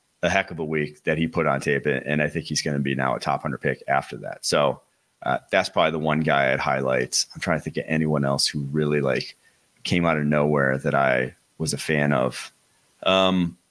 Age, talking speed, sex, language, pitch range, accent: 30-49, 235 wpm, male, English, 75-95 Hz, American